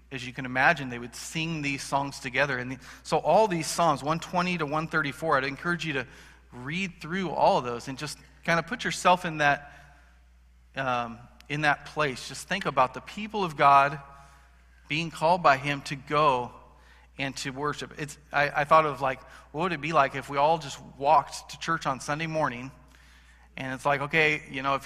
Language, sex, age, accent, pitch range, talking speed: English, male, 40-59, American, 135-165 Hz, 200 wpm